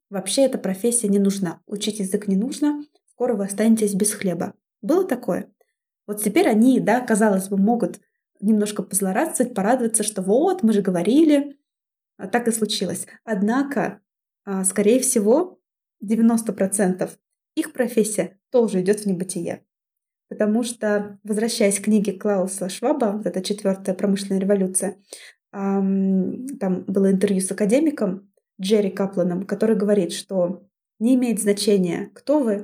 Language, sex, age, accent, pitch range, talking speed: Russian, female, 20-39, native, 195-240 Hz, 130 wpm